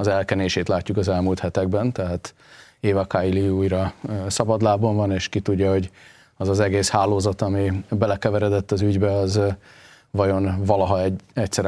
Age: 30-49